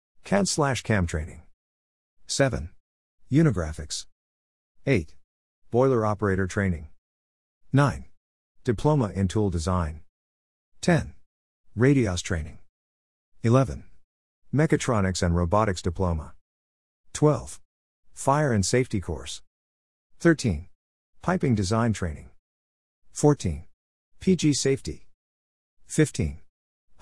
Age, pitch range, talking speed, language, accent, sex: 50-69, 80-110 Hz, 80 wpm, Hindi, American, male